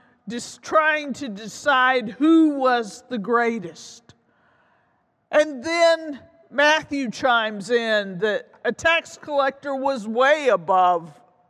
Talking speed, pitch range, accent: 105 wpm, 210-285 Hz, American